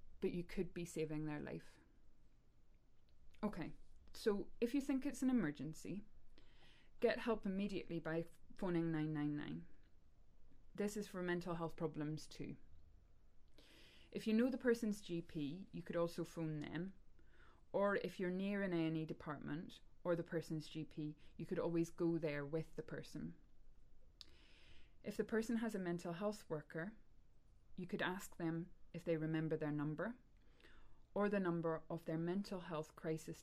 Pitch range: 155-185 Hz